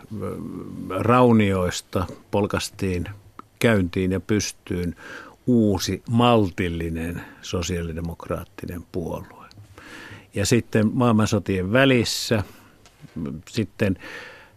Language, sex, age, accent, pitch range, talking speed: Finnish, male, 50-69, native, 95-110 Hz, 60 wpm